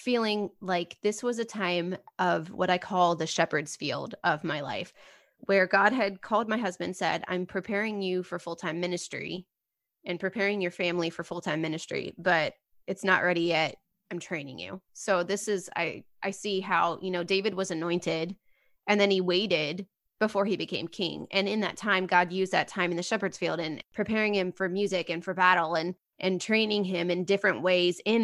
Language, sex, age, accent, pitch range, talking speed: English, female, 20-39, American, 175-205 Hz, 195 wpm